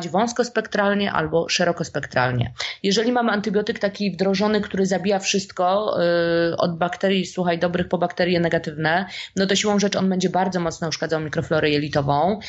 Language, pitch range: Polish, 170-200 Hz